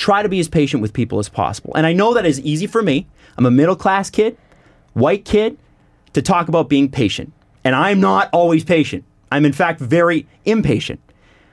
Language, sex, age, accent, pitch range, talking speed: English, male, 30-49, American, 125-175 Hz, 205 wpm